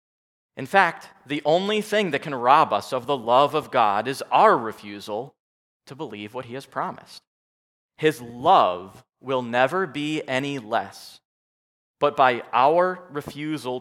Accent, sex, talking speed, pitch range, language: American, male, 150 wpm, 110-155 Hz, English